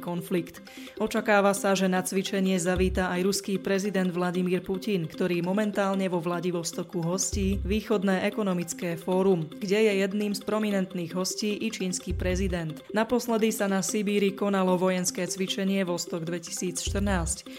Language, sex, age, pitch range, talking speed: Slovak, female, 20-39, 180-200 Hz, 130 wpm